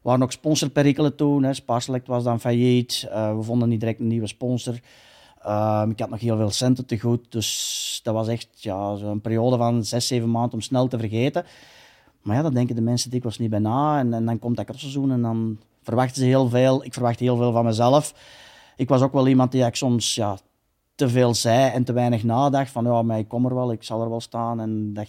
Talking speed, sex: 240 wpm, male